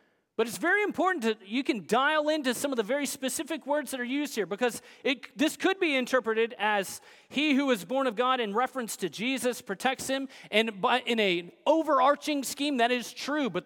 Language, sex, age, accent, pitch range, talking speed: English, male, 30-49, American, 225-295 Hz, 210 wpm